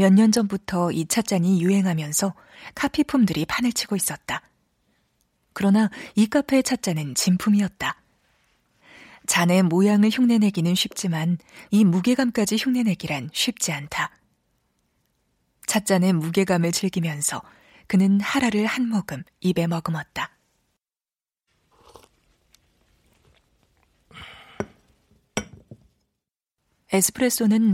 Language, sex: Korean, female